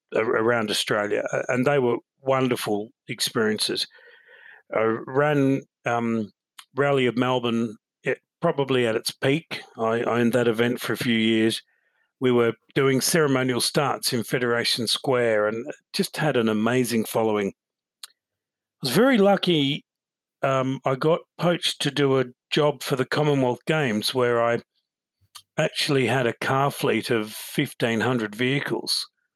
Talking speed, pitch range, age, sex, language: 135 wpm, 115-140 Hz, 50-69, male, English